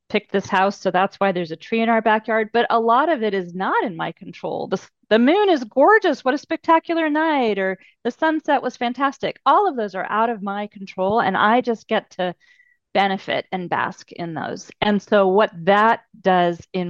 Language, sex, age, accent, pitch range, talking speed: English, female, 40-59, American, 185-230 Hz, 215 wpm